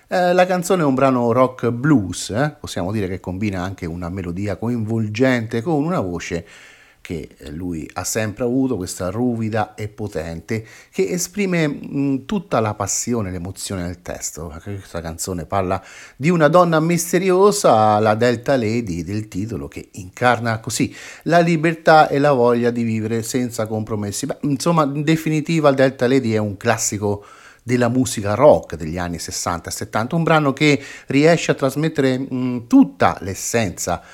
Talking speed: 150 wpm